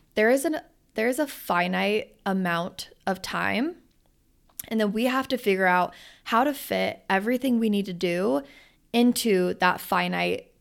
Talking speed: 145 wpm